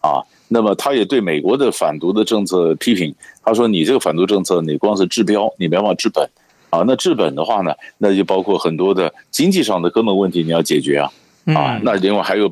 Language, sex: Chinese, male